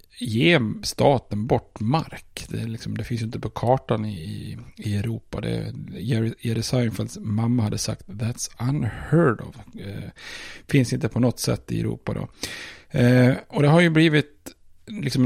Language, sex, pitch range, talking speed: Swedish, male, 110-130 Hz, 155 wpm